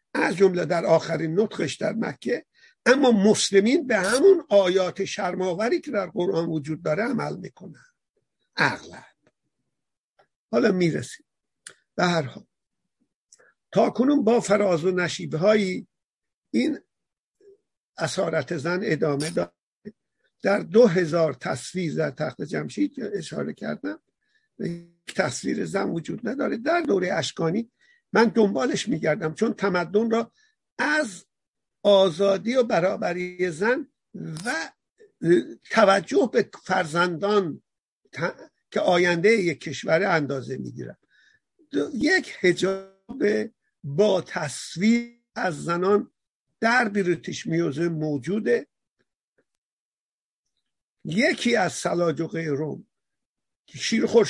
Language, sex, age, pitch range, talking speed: Persian, male, 50-69, 170-235 Hz, 100 wpm